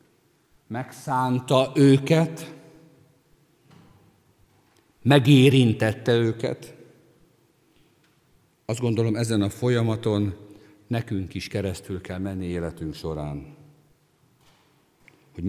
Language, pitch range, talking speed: Hungarian, 95-135 Hz, 65 wpm